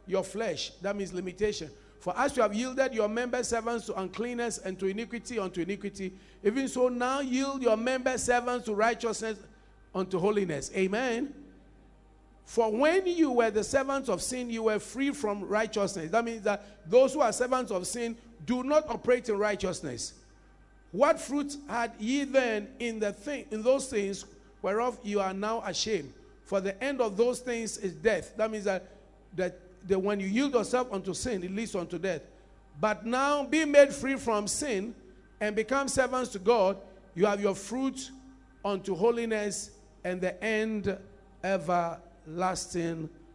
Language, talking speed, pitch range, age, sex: English, 165 wpm, 180-240 Hz, 50-69, male